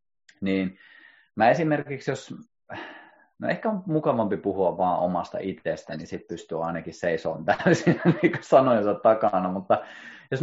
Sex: male